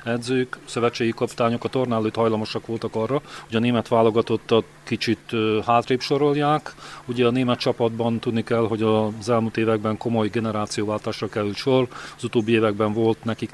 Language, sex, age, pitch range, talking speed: Hungarian, male, 40-59, 115-130 Hz, 150 wpm